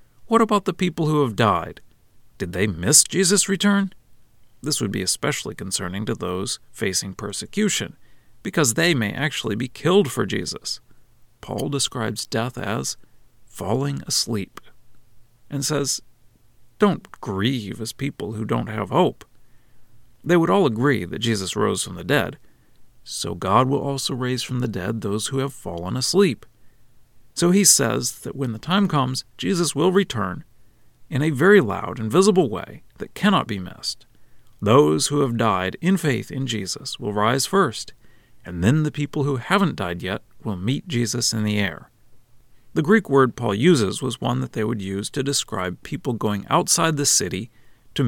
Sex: male